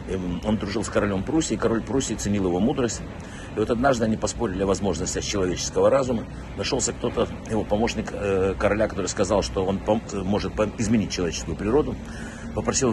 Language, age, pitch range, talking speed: Russian, 60-79, 95-120 Hz, 155 wpm